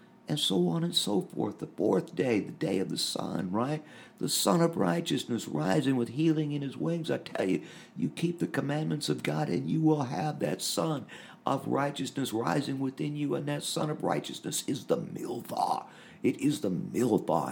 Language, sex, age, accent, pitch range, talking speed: English, male, 50-69, American, 110-160 Hz, 195 wpm